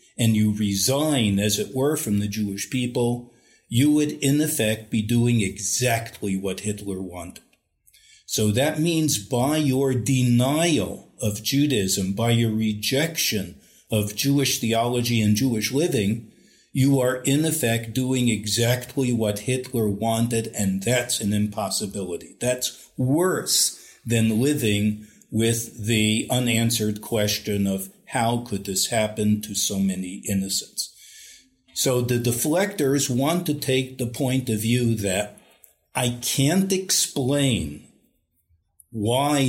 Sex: male